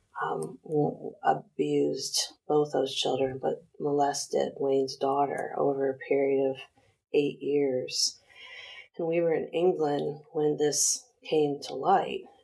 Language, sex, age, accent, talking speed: English, female, 30-49, American, 120 wpm